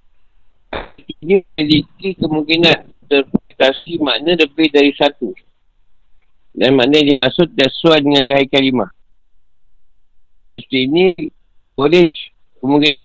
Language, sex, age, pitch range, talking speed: Malay, male, 50-69, 95-150 Hz, 85 wpm